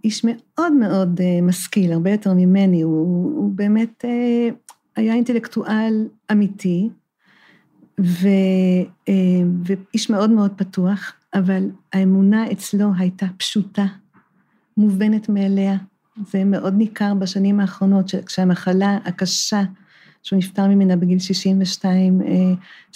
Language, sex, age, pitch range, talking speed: Hebrew, female, 50-69, 190-220 Hz, 95 wpm